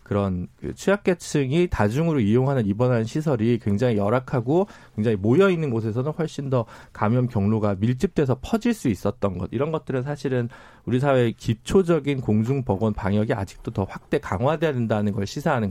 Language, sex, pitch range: Korean, male, 110-170 Hz